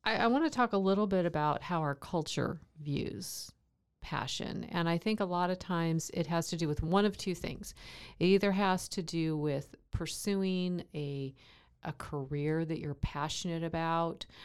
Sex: female